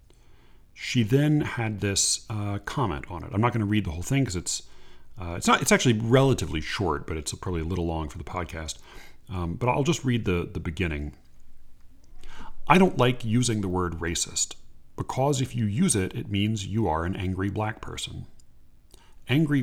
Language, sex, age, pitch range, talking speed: English, male, 40-59, 90-120 Hz, 190 wpm